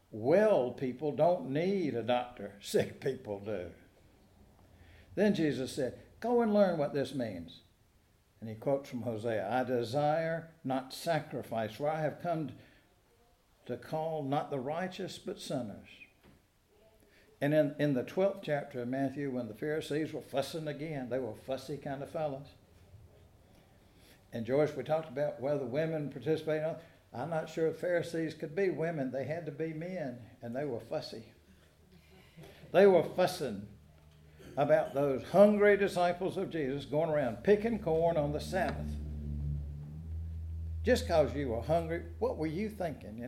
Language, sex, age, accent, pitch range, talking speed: English, male, 60-79, American, 100-155 Hz, 155 wpm